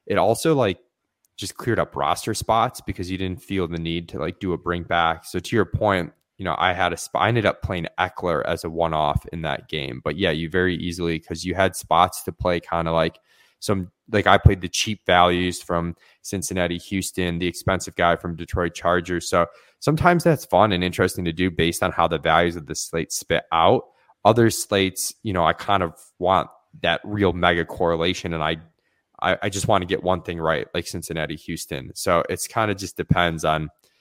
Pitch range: 85-95 Hz